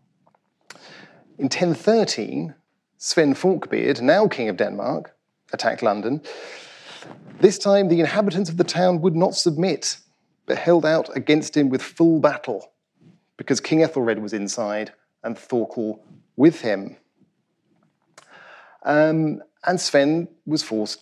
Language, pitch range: English, 110-160 Hz